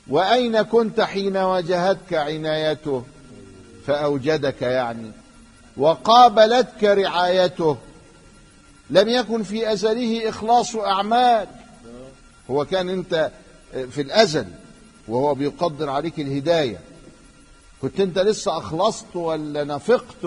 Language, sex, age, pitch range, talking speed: Arabic, male, 50-69, 130-195 Hz, 90 wpm